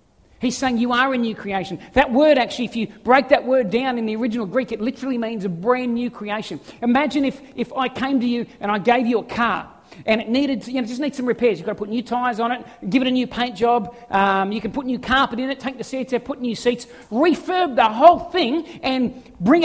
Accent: Australian